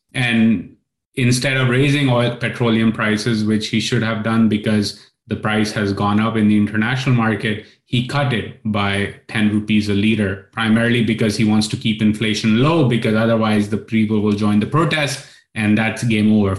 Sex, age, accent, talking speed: male, 30-49, Indian, 180 wpm